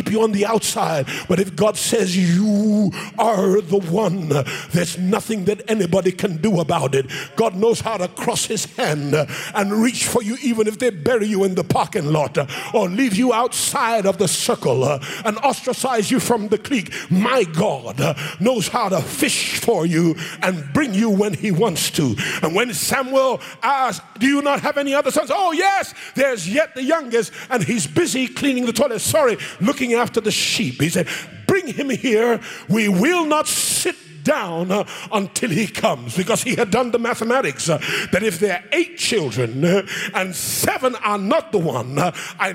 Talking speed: 180 wpm